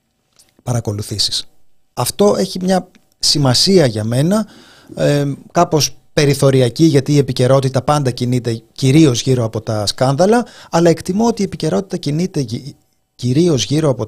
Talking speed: 115 wpm